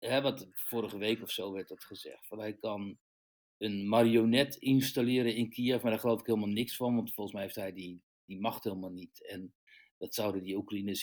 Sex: male